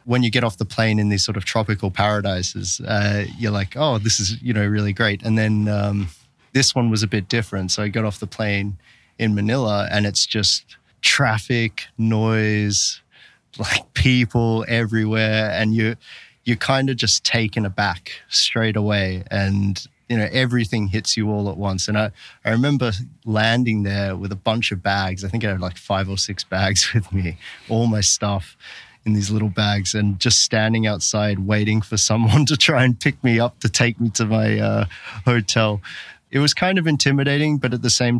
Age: 20-39